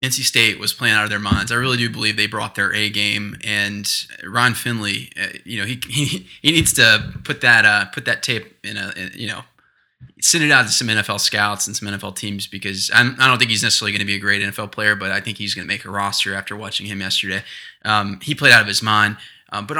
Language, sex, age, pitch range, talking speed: English, male, 20-39, 105-125 Hz, 250 wpm